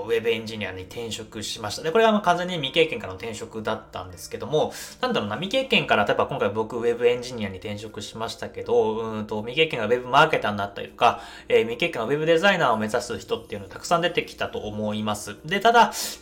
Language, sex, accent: Japanese, male, native